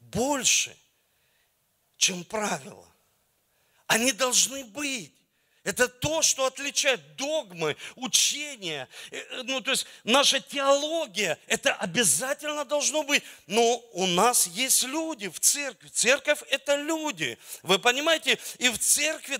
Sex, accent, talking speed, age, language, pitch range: male, native, 110 wpm, 50-69, Russian, 190-270 Hz